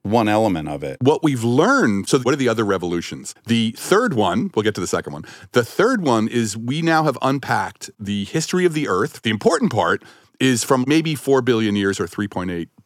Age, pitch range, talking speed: 50-69, 110-165 Hz, 215 wpm